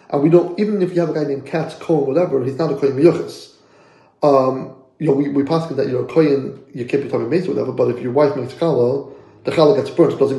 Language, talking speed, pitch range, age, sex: English, 260 wpm, 140-175 Hz, 30-49, male